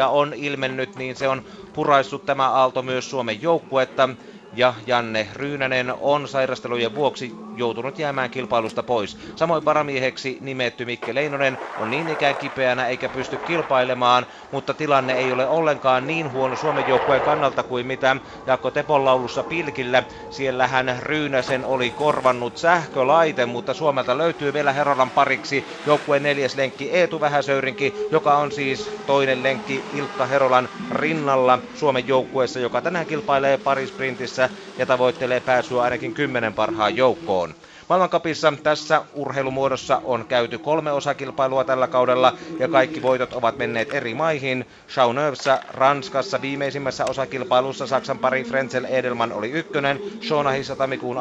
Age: 30-49